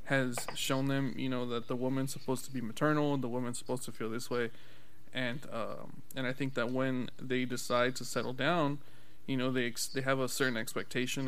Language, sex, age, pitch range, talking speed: English, male, 20-39, 125-145 Hz, 220 wpm